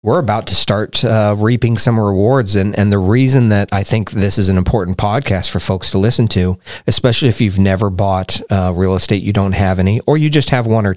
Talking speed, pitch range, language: 235 wpm, 95-120 Hz, English